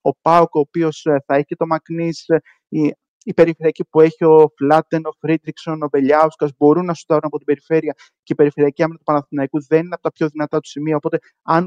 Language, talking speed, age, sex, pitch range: Greek, 210 wpm, 30-49, male, 130-160 Hz